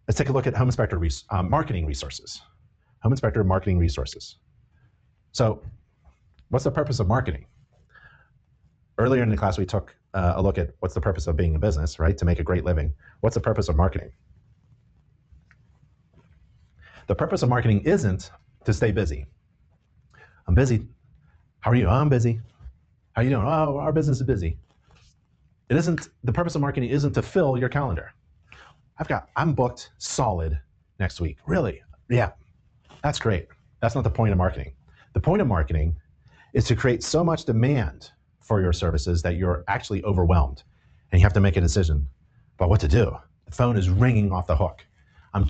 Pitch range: 85-120 Hz